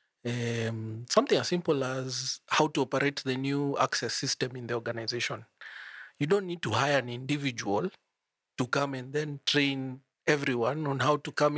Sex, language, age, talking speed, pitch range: male, English, 40-59, 165 wpm, 125-150 Hz